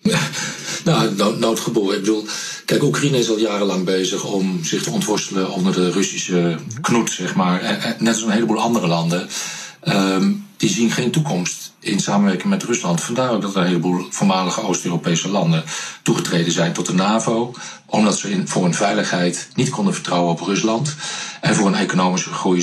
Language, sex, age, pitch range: Dutch, male, 40-59, 90-115 Hz